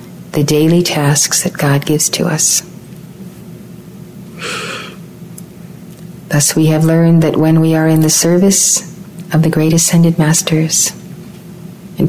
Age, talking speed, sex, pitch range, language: 40-59, 125 wpm, female, 155-180 Hz, English